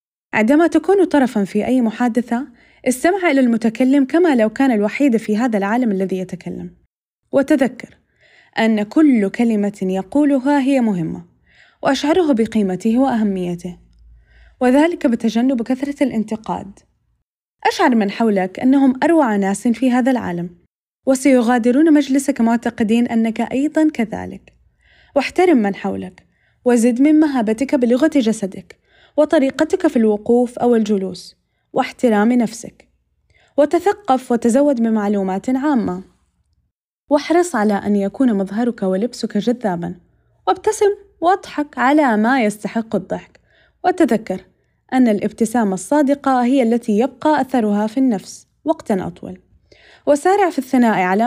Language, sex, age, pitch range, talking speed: Arabic, female, 10-29, 210-280 Hz, 110 wpm